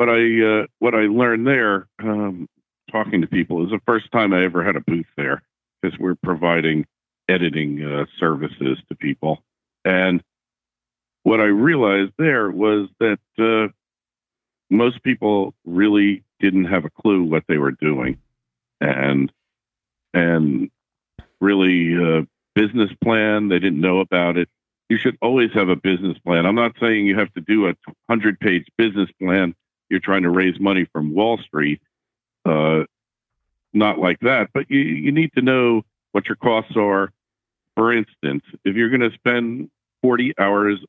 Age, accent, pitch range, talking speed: 50-69, American, 85-110 Hz, 160 wpm